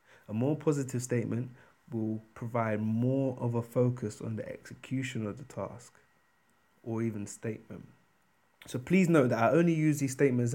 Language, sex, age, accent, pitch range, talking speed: English, male, 20-39, British, 115-135 Hz, 160 wpm